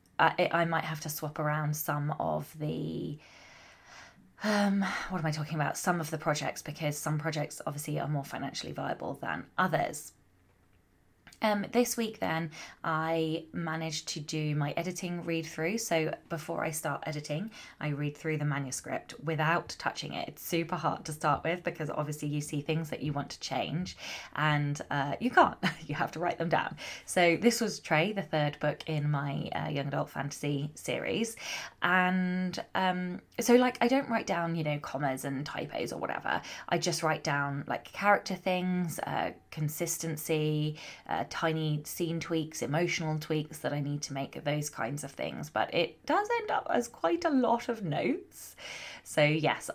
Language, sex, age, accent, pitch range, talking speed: English, female, 20-39, British, 150-175 Hz, 175 wpm